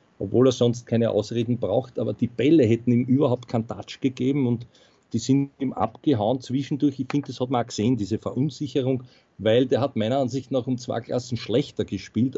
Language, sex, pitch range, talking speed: German, male, 110-140 Hz, 200 wpm